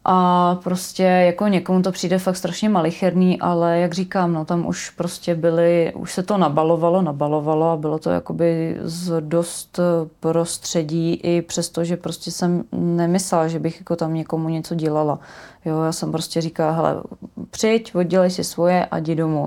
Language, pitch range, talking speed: Czech, 165-180 Hz, 175 wpm